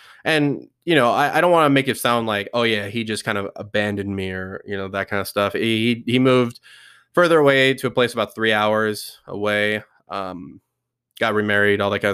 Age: 20-39